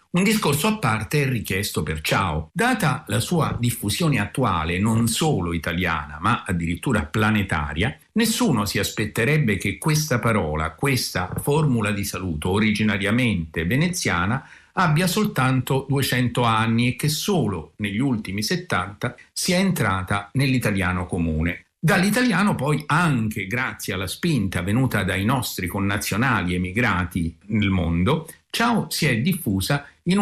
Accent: native